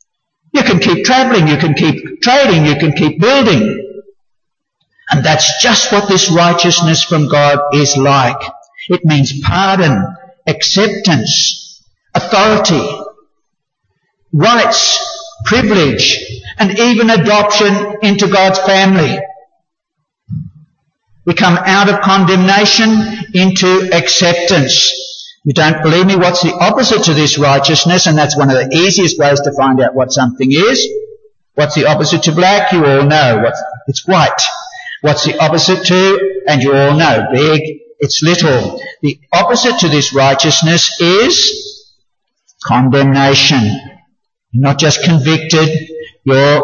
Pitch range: 145-195 Hz